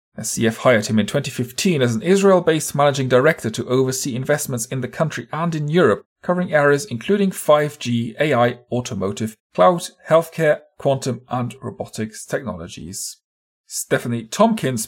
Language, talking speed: English, 135 wpm